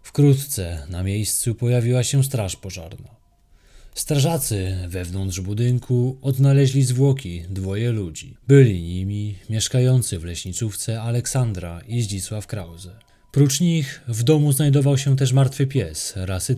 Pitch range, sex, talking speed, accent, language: 95-135 Hz, male, 120 wpm, native, Polish